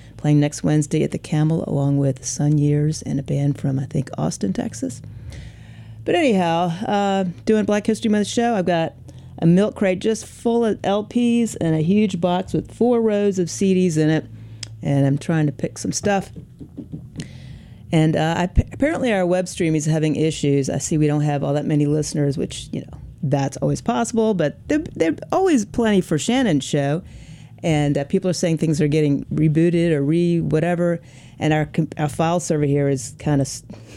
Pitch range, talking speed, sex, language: 140-175 Hz, 185 wpm, female, English